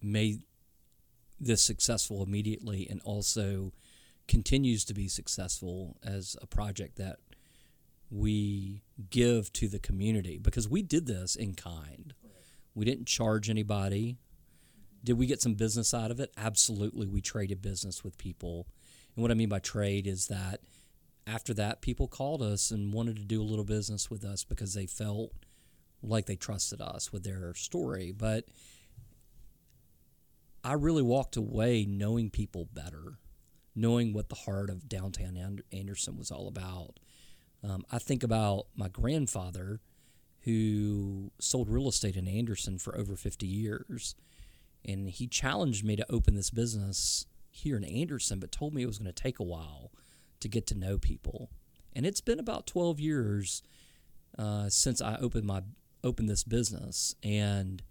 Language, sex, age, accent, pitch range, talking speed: English, male, 40-59, American, 95-115 Hz, 155 wpm